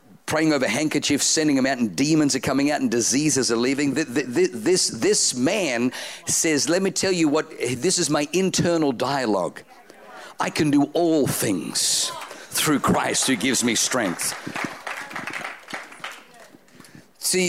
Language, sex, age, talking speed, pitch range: English, male, 50-69, 145 wpm, 125-165 Hz